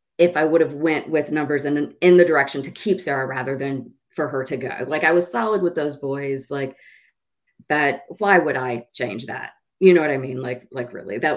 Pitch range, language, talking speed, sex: 140-180 Hz, English, 225 wpm, female